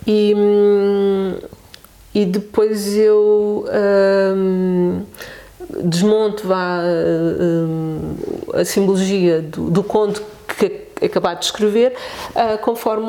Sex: female